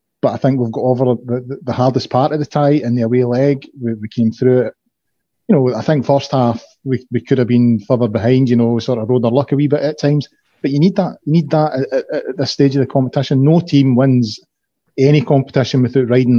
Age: 30-49